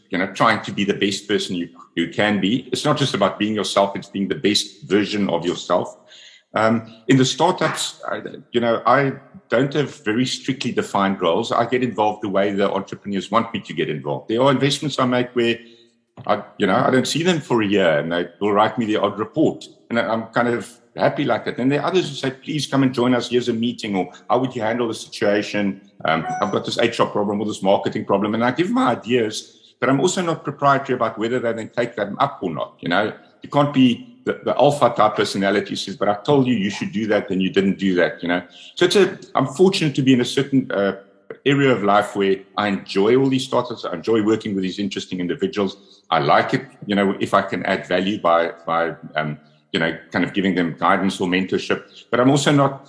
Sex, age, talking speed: male, 60-79, 240 wpm